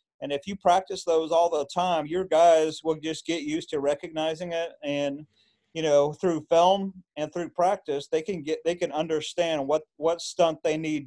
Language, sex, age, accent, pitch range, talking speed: English, male, 40-59, American, 150-180 Hz, 195 wpm